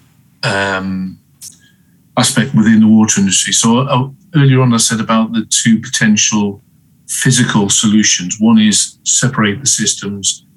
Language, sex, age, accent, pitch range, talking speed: English, male, 40-59, British, 110-145 Hz, 130 wpm